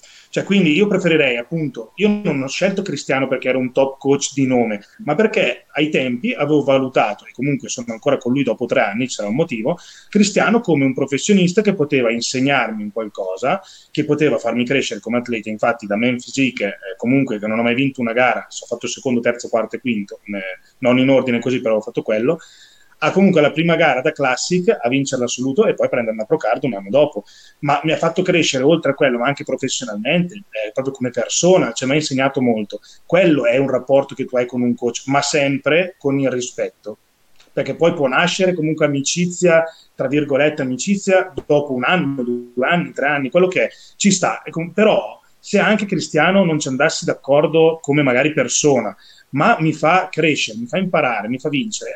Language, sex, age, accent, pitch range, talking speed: Italian, male, 30-49, native, 125-165 Hz, 195 wpm